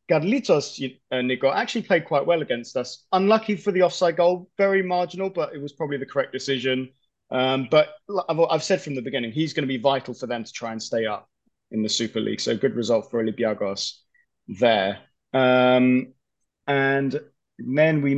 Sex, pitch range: male, 130-175 Hz